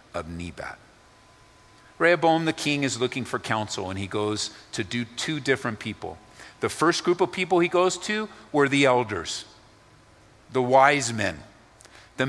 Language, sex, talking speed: English, male, 155 wpm